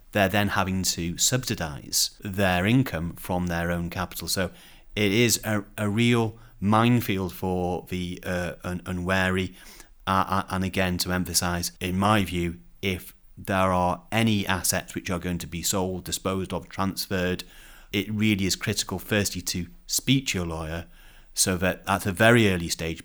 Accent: British